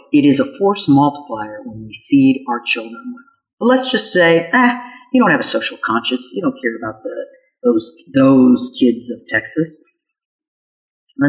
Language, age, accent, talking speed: English, 40-59, American, 180 wpm